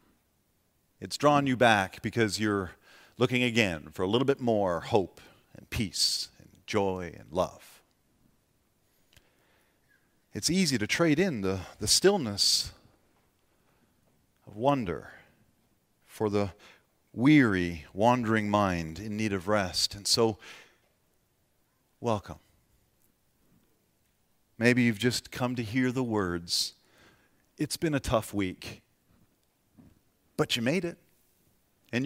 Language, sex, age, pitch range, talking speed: English, male, 40-59, 100-135 Hz, 110 wpm